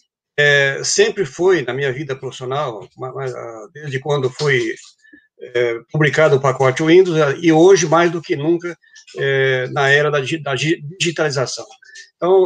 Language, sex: Portuguese, male